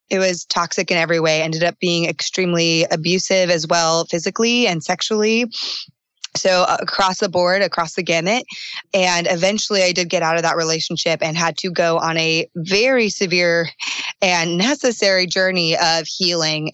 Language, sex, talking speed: English, female, 160 wpm